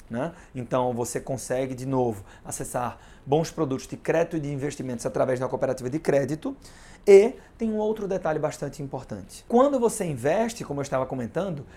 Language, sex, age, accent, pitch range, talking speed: Portuguese, male, 30-49, Brazilian, 135-190 Hz, 170 wpm